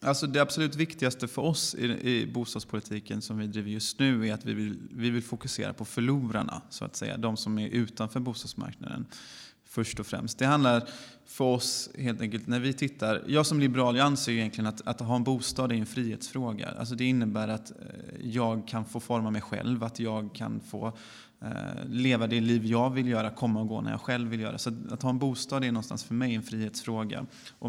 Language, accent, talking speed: Swedish, native, 210 wpm